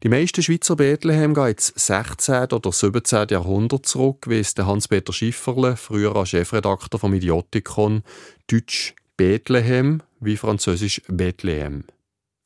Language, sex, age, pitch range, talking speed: German, male, 30-49, 100-130 Hz, 110 wpm